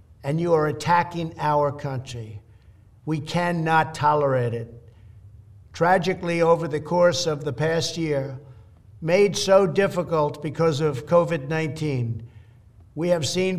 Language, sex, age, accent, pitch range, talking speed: English, male, 60-79, American, 120-170 Hz, 120 wpm